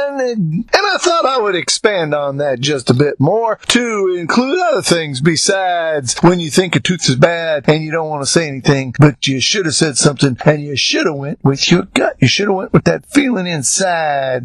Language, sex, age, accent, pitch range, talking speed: English, male, 50-69, American, 145-190 Hz, 220 wpm